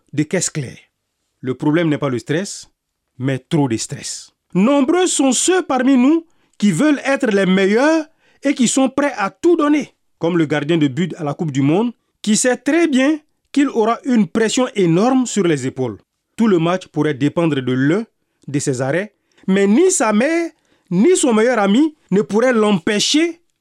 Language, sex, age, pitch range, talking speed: French, male, 40-59, 160-260 Hz, 185 wpm